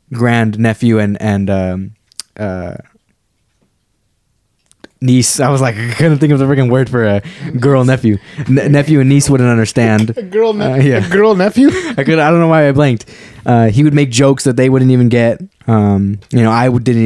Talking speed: 200 wpm